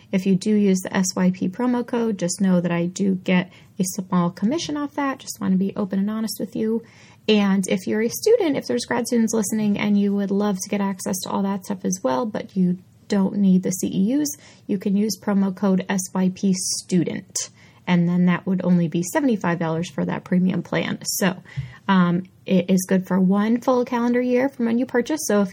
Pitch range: 190-235 Hz